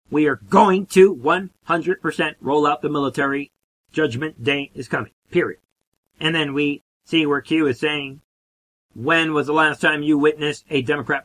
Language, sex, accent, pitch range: English, male, American, 130-150 Hz